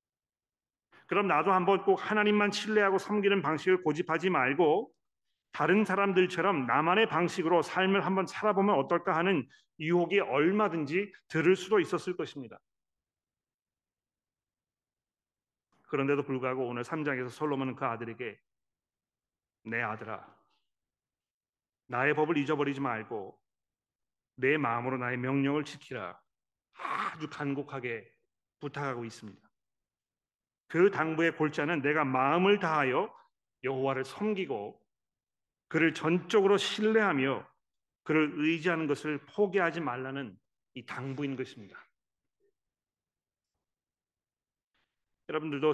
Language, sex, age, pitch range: Korean, male, 40-59, 135-180 Hz